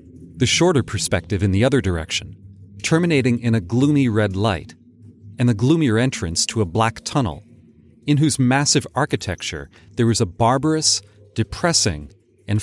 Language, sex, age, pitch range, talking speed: English, male, 40-59, 100-130 Hz, 145 wpm